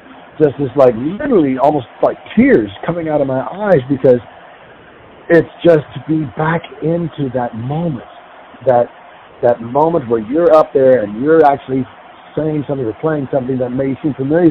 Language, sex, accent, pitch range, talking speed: English, male, American, 125-150 Hz, 165 wpm